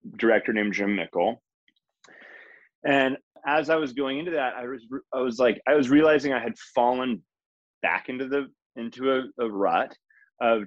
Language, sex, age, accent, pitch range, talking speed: English, male, 20-39, American, 105-135 Hz, 170 wpm